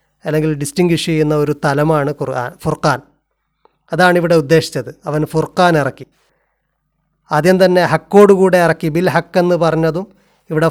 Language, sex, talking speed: Malayalam, male, 120 wpm